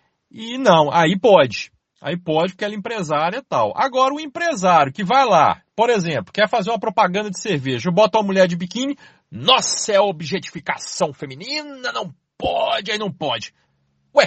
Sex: male